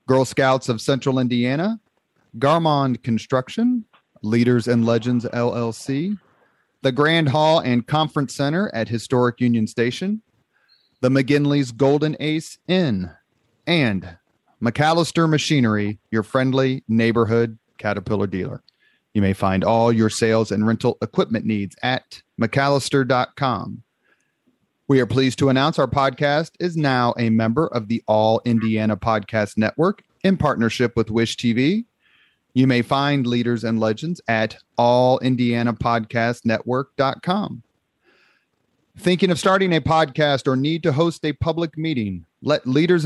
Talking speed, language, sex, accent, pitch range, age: 125 wpm, English, male, American, 115-145 Hz, 30-49